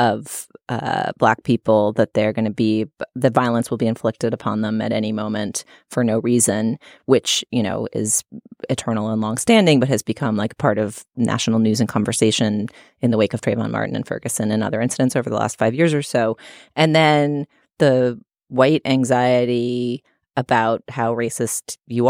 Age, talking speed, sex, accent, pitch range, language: 30-49, 180 wpm, female, American, 110-130 Hz, English